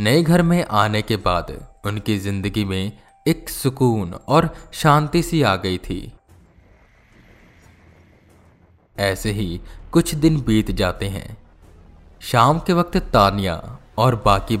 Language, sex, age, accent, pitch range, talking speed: Hindi, male, 20-39, native, 95-130 Hz, 125 wpm